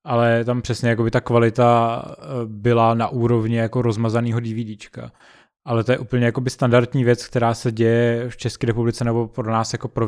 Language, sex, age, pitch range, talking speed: Czech, male, 20-39, 115-125 Hz, 165 wpm